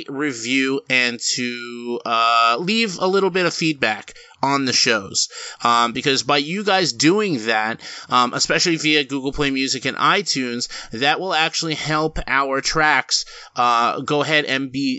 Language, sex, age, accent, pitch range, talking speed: English, male, 30-49, American, 130-150 Hz, 155 wpm